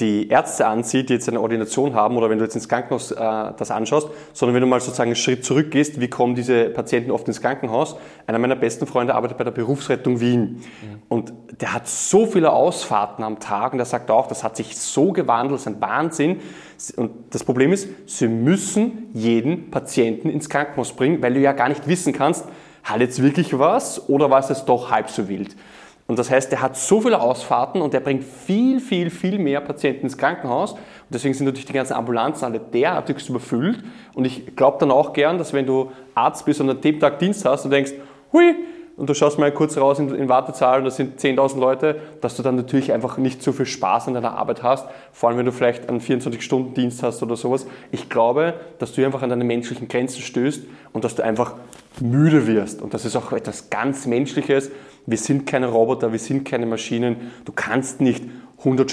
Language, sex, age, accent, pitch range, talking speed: German, male, 20-39, German, 120-145 Hz, 215 wpm